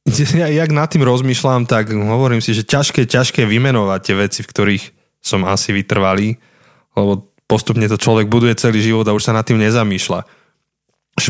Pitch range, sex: 105-130 Hz, male